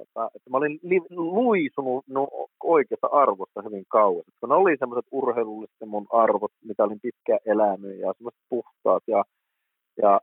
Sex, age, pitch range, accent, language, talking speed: male, 30-49, 120-175 Hz, native, Finnish, 140 wpm